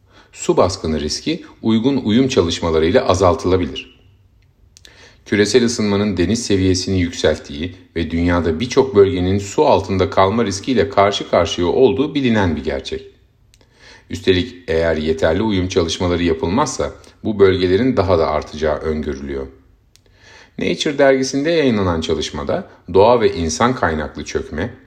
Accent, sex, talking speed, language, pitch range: native, male, 115 wpm, Turkish, 80-105 Hz